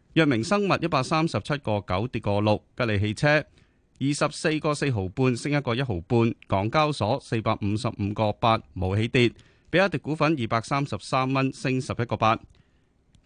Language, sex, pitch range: Chinese, male, 110-155 Hz